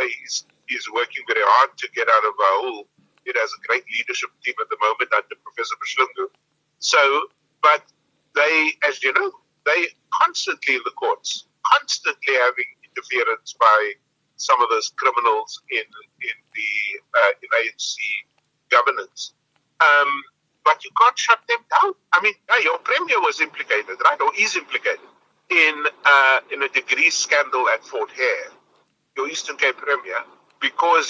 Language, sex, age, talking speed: English, male, 50-69, 150 wpm